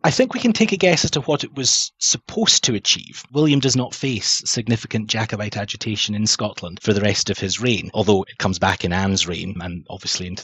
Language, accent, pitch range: English, British, 105-130 Hz